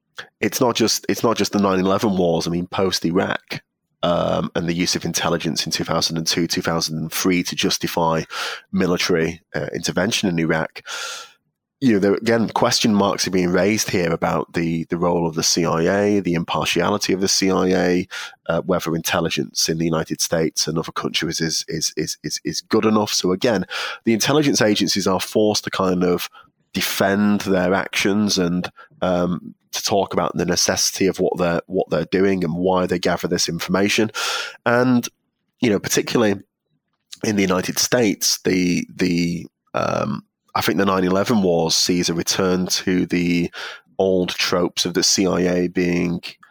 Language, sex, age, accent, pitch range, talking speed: English, male, 30-49, British, 85-100 Hz, 175 wpm